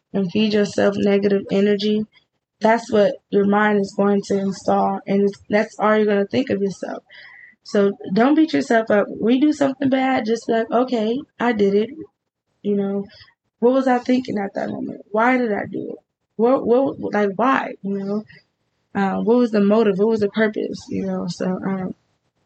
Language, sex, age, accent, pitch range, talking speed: English, female, 20-39, American, 200-235 Hz, 185 wpm